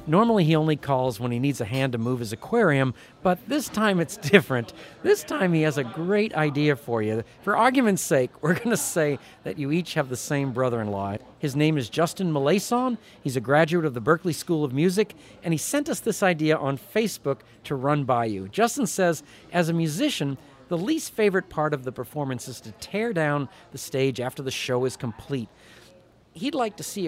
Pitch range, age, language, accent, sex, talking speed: 130-185 Hz, 50-69, English, American, male, 210 wpm